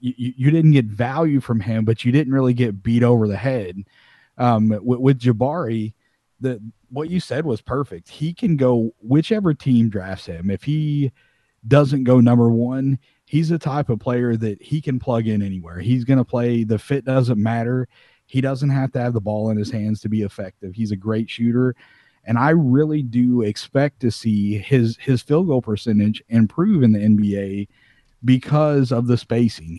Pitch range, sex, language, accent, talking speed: 110-130 Hz, male, English, American, 190 wpm